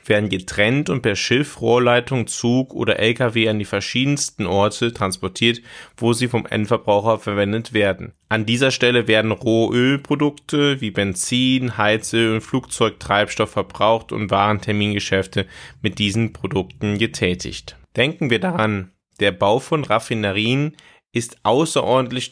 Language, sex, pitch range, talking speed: German, male, 105-125 Hz, 120 wpm